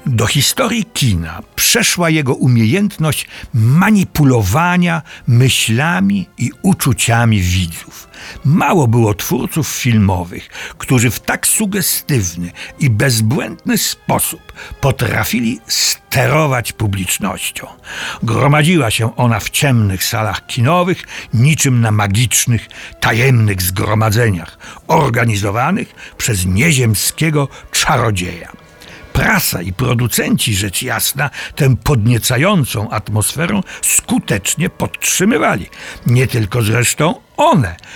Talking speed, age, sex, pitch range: 85 wpm, 60-79, male, 110-155 Hz